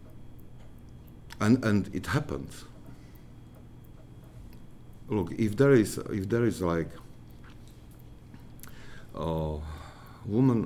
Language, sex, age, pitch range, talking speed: English, male, 50-69, 80-105 Hz, 80 wpm